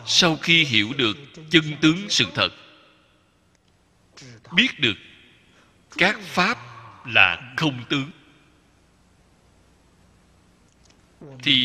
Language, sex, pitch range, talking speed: Vietnamese, male, 100-155 Hz, 80 wpm